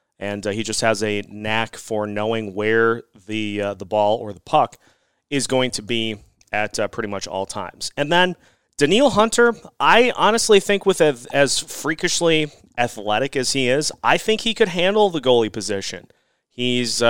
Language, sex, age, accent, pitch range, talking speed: English, male, 30-49, American, 105-130 Hz, 180 wpm